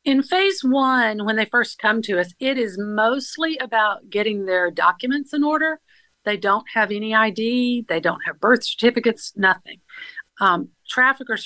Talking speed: 160 wpm